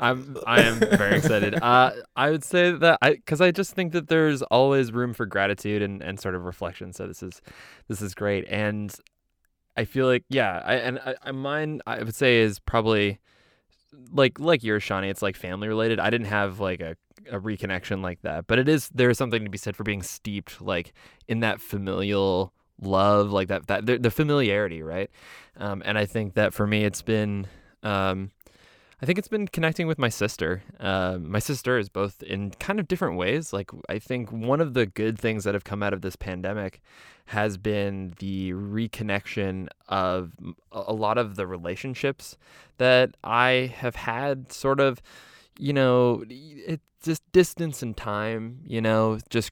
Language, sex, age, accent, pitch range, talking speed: English, male, 20-39, American, 95-125 Hz, 190 wpm